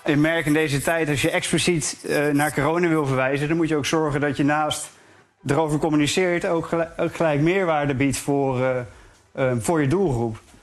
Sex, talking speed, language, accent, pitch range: male, 175 wpm, English, Dutch, 145-170 Hz